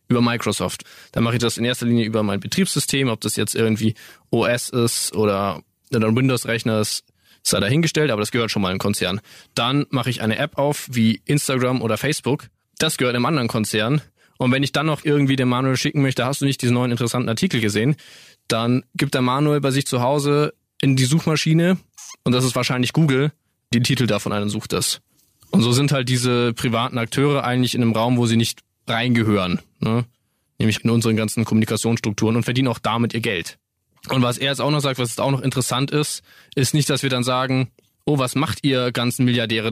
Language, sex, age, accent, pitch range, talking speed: German, male, 20-39, German, 115-135 Hz, 210 wpm